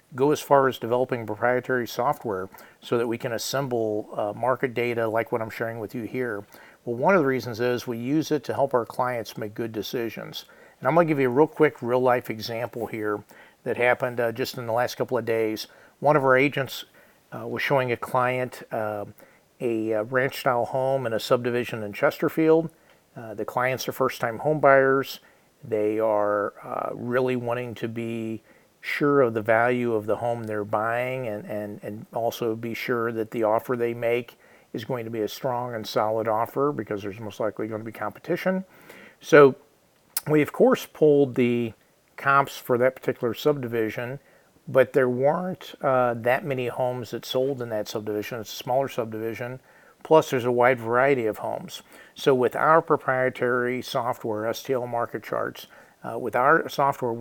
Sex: male